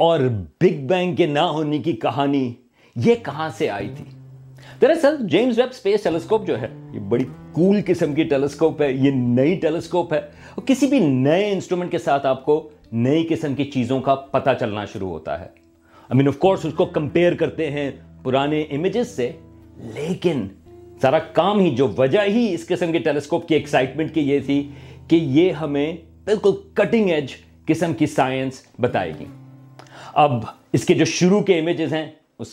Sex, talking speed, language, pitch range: male, 150 wpm, Urdu, 130-175 Hz